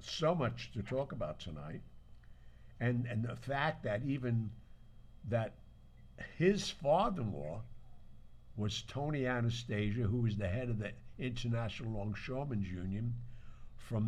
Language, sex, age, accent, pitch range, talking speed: English, male, 60-79, American, 110-130 Hz, 120 wpm